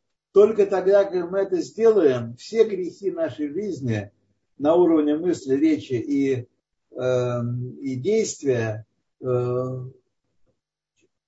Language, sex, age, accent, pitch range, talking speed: Russian, male, 60-79, native, 135-200 Hz, 100 wpm